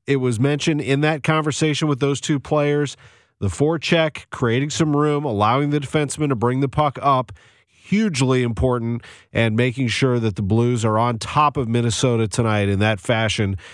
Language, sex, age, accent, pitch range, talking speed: English, male, 40-59, American, 105-150 Hz, 180 wpm